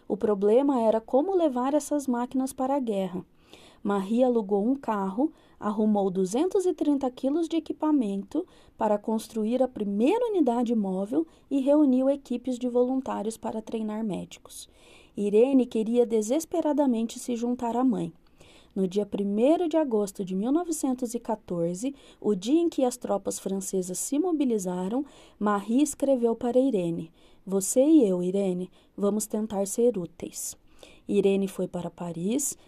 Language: Portuguese